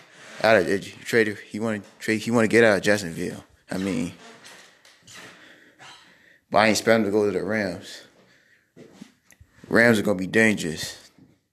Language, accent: English, American